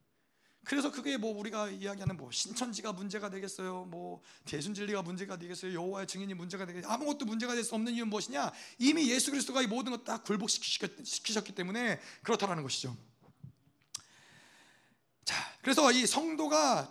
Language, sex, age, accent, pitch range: Korean, male, 30-49, native, 180-240 Hz